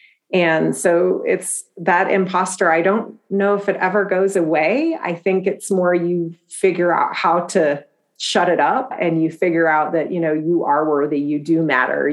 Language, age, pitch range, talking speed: English, 30-49, 155-195 Hz, 190 wpm